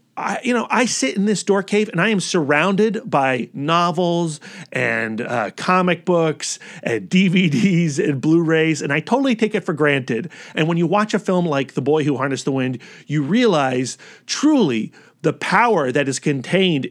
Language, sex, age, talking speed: English, male, 40-59, 180 wpm